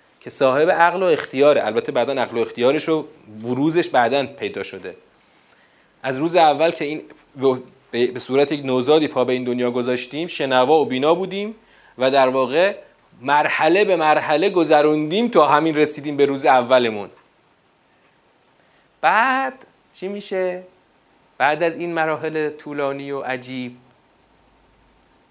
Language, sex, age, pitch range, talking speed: Persian, male, 40-59, 130-205 Hz, 130 wpm